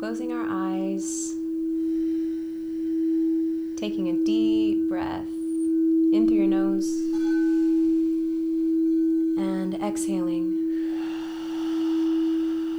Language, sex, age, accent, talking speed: English, female, 30-49, American, 60 wpm